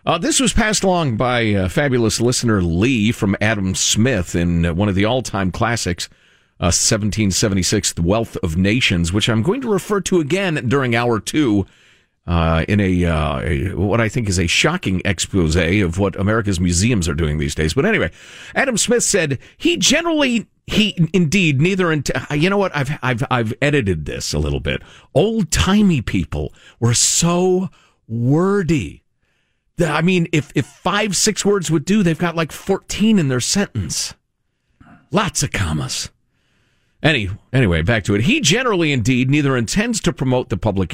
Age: 50-69